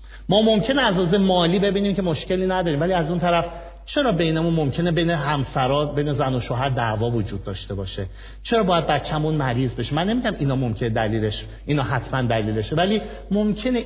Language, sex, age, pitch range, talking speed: Persian, male, 50-69, 120-195 Hz, 175 wpm